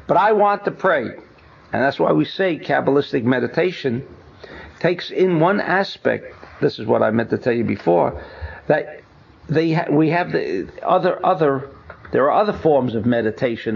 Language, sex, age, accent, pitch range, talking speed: English, male, 60-79, American, 130-200 Hz, 170 wpm